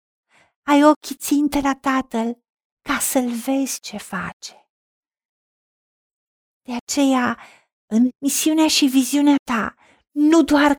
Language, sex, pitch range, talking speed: Romanian, female, 240-280 Hz, 105 wpm